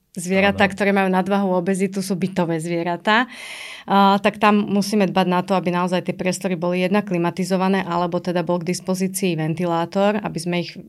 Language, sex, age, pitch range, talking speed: Slovak, female, 30-49, 175-205 Hz, 170 wpm